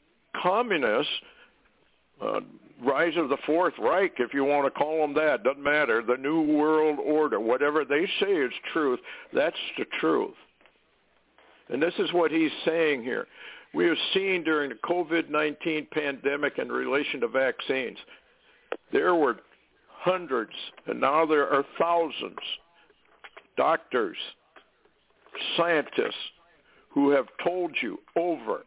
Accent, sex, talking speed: American, male, 130 wpm